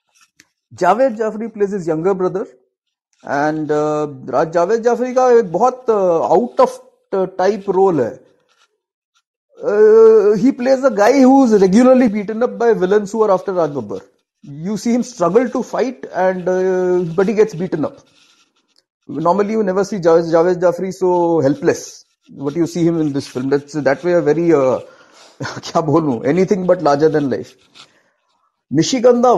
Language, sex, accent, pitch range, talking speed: Hindi, male, native, 155-235 Hz, 110 wpm